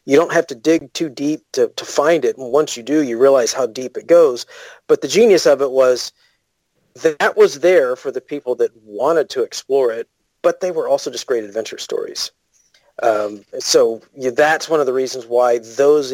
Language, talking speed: English, 210 wpm